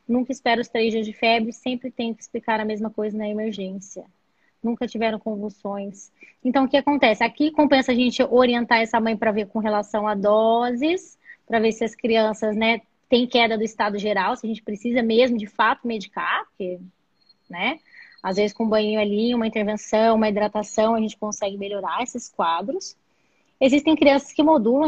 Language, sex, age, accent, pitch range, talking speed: Portuguese, female, 20-39, Brazilian, 215-260 Hz, 185 wpm